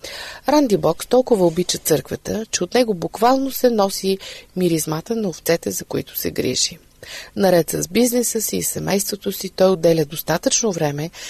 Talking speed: 155 wpm